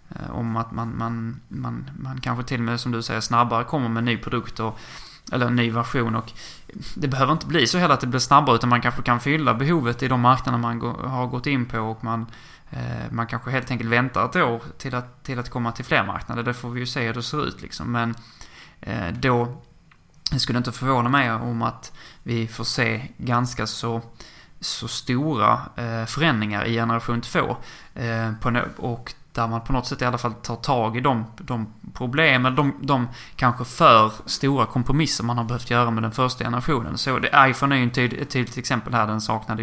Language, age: Swedish, 20-39